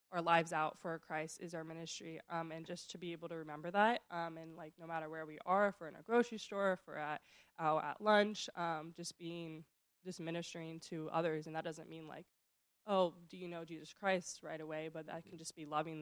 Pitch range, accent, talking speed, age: 155-170 Hz, American, 235 wpm, 20-39